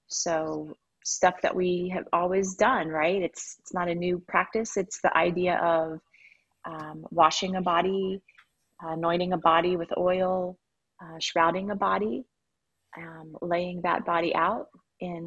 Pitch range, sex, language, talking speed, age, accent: 165-190 Hz, female, English, 145 wpm, 30-49, American